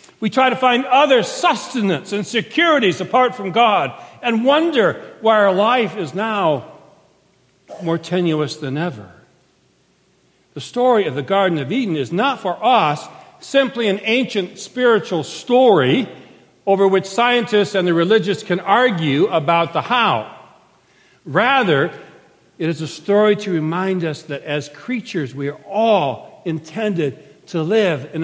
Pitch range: 165-245 Hz